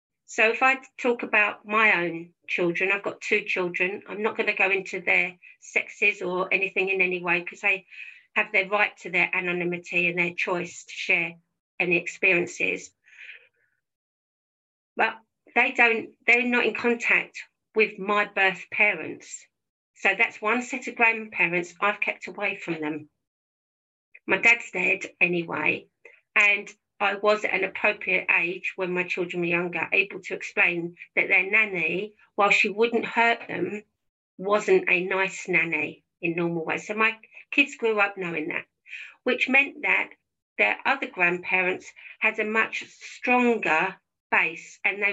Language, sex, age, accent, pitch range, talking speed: English, female, 50-69, British, 180-220 Hz, 155 wpm